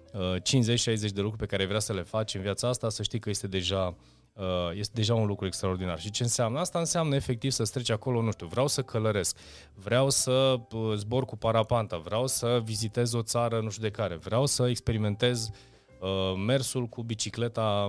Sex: male